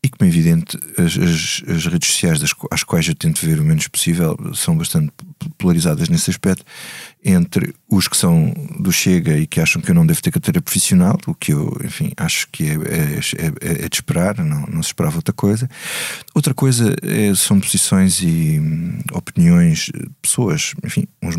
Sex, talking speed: male, 195 wpm